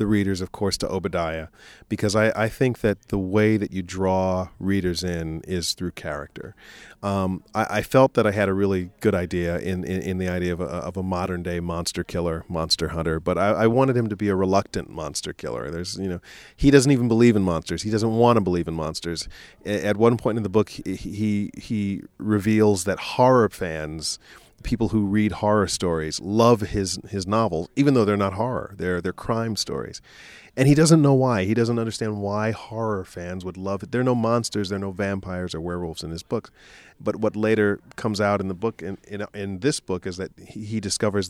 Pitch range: 90-110 Hz